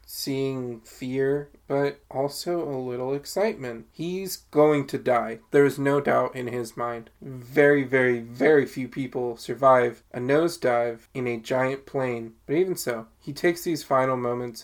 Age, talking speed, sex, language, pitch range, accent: 20-39, 155 wpm, male, English, 120-140 Hz, American